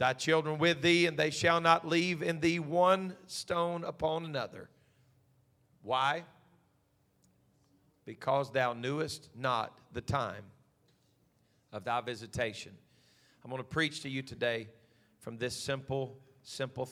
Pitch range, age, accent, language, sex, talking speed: 120-150 Hz, 40-59, American, English, male, 130 wpm